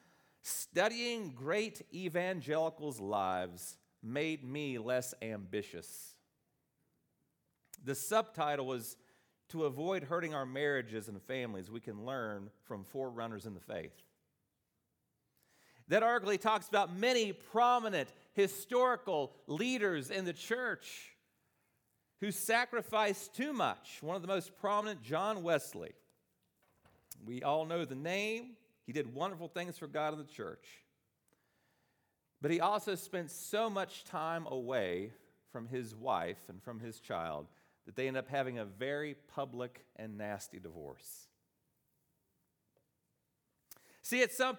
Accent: American